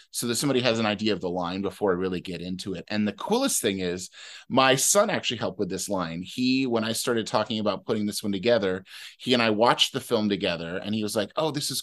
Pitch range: 100-125 Hz